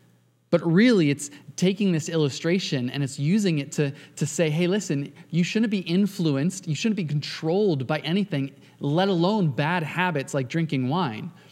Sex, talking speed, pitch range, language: male, 165 wpm, 135-170 Hz, English